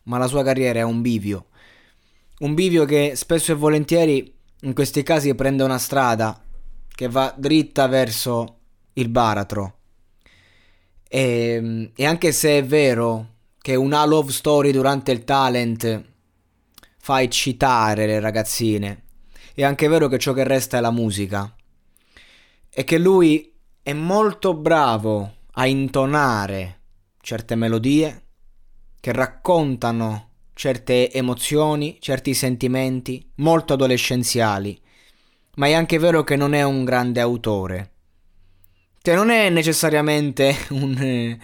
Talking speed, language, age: 120 wpm, Italian, 20-39